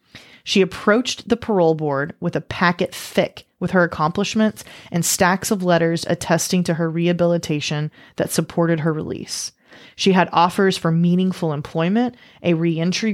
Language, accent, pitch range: English, American, 160-195 Hz